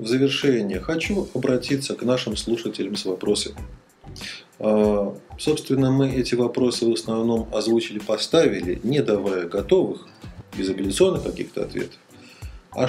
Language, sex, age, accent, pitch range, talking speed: Russian, male, 40-59, native, 105-145 Hz, 115 wpm